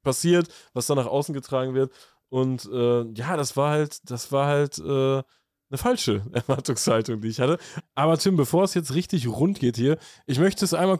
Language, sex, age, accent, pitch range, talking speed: German, male, 20-39, German, 130-160 Hz, 195 wpm